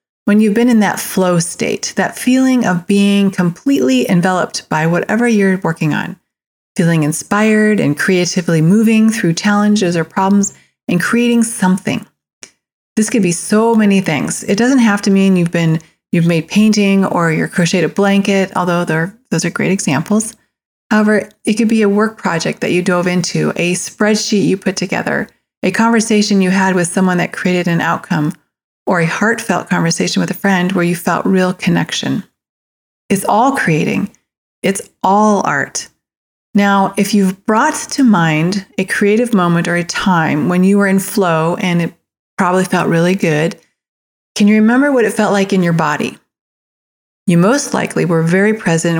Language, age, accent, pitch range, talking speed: English, 30-49, American, 175-210 Hz, 170 wpm